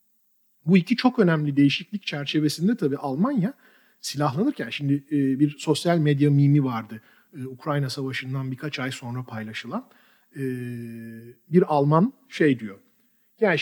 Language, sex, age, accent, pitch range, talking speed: Turkish, male, 50-69, native, 140-220 Hz, 115 wpm